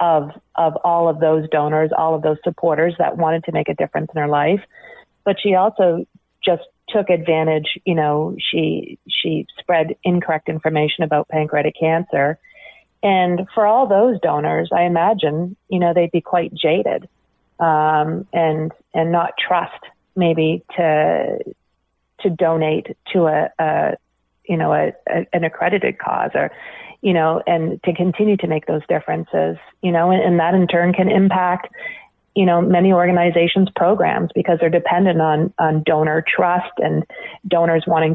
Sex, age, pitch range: female, 40-59, 160-180 Hz